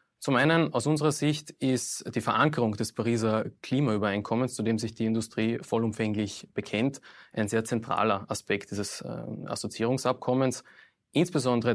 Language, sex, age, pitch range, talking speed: German, male, 20-39, 110-125 Hz, 130 wpm